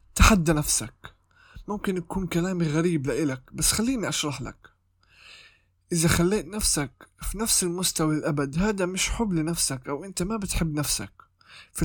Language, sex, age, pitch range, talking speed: Arabic, male, 20-39, 150-185 Hz, 140 wpm